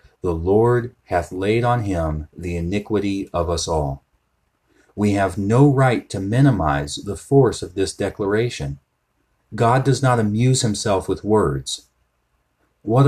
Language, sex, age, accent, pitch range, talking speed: English, male, 40-59, American, 75-105 Hz, 140 wpm